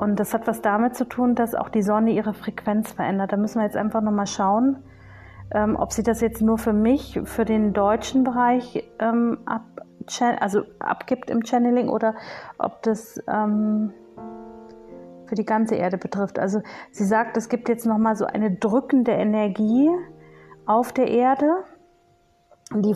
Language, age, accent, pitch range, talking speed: German, 30-49, German, 205-235 Hz, 160 wpm